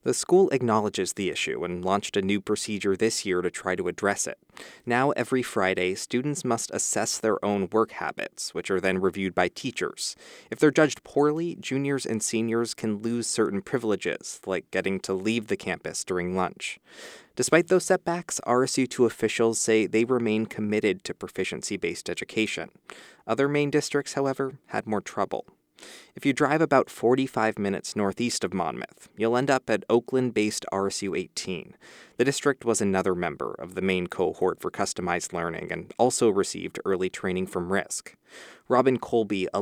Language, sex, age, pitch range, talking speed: English, male, 20-39, 100-130 Hz, 165 wpm